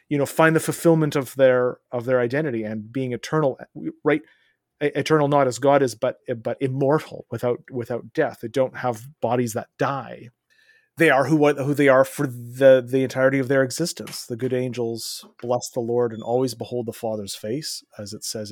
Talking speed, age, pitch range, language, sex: 190 wpm, 30-49, 120-140 Hz, English, male